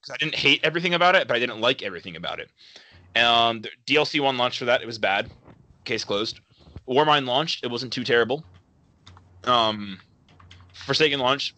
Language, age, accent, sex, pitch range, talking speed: English, 20-39, American, male, 120-165 Hz, 175 wpm